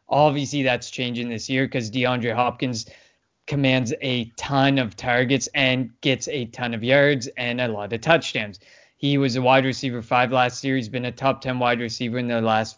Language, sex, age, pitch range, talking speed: English, male, 20-39, 125-145 Hz, 195 wpm